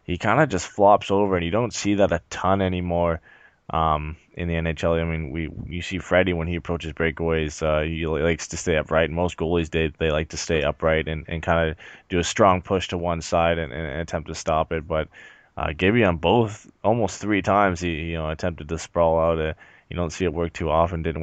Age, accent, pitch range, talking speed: 20-39, American, 80-90 Hz, 235 wpm